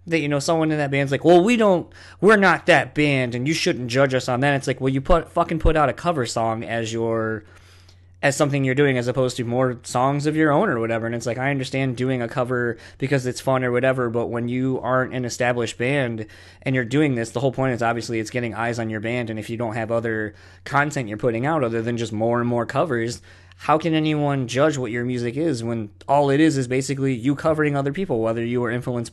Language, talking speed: English, 255 wpm